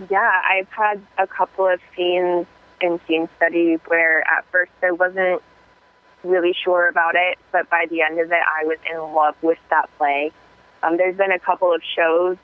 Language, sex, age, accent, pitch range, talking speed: English, female, 20-39, American, 165-190 Hz, 190 wpm